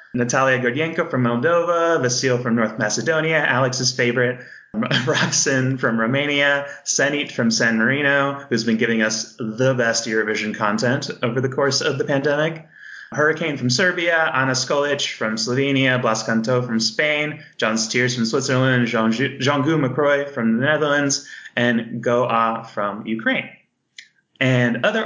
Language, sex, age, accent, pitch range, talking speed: English, male, 20-39, American, 115-150 Hz, 140 wpm